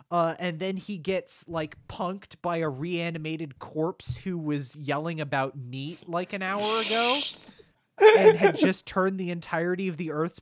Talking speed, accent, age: 165 wpm, American, 30-49